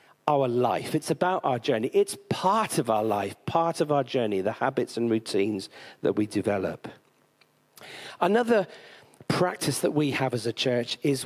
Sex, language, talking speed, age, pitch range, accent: male, English, 165 wpm, 40-59, 135-190 Hz, British